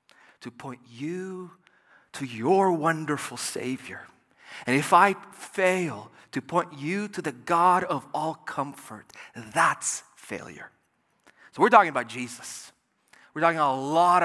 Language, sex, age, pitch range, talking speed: English, male, 30-49, 115-145 Hz, 130 wpm